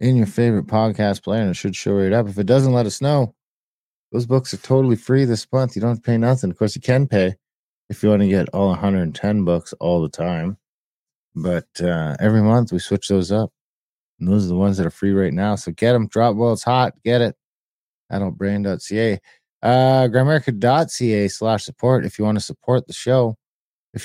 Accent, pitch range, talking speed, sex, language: American, 95-120 Hz, 215 wpm, male, English